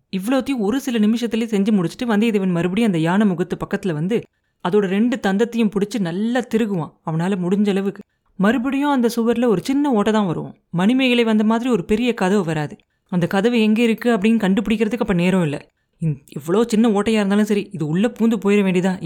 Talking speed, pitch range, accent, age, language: 175 wpm, 180-225 Hz, native, 30-49, Tamil